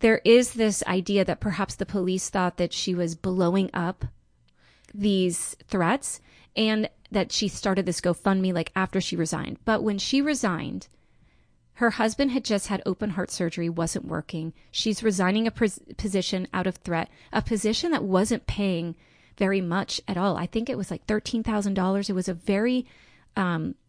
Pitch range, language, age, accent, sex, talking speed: 185-220 Hz, English, 30-49, American, female, 170 wpm